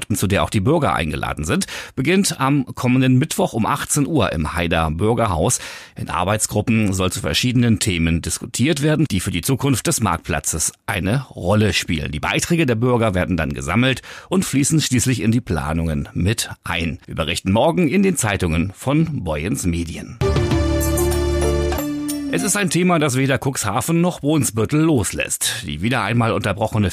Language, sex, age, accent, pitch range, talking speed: German, male, 40-59, German, 90-130 Hz, 165 wpm